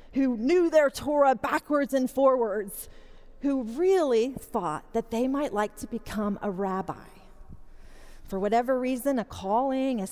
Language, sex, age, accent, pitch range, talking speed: English, female, 40-59, American, 220-285 Hz, 140 wpm